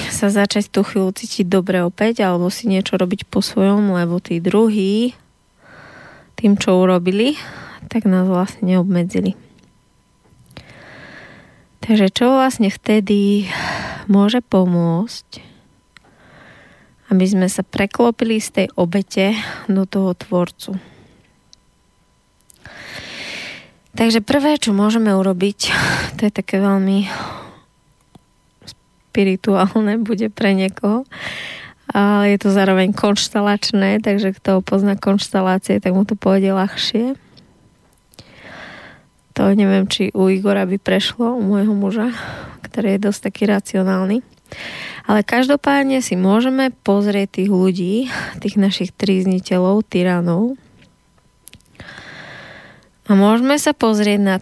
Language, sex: Slovak, female